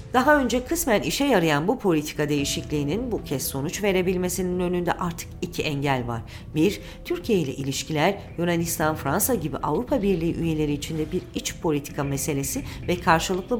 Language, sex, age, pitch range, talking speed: Turkish, female, 40-59, 155-190 Hz, 150 wpm